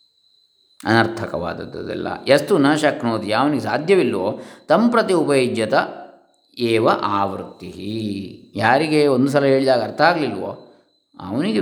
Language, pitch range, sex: Kannada, 110-135 Hz, male